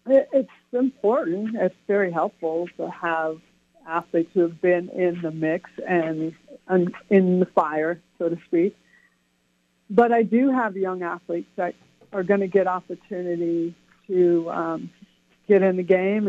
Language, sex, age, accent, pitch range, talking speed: English, female, 60-79, American, 175-215 Hz, 145 wpm